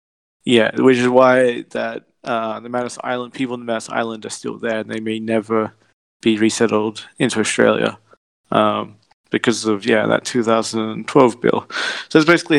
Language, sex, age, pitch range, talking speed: English, male, 20-39, 110-125 Hz, 165 wpm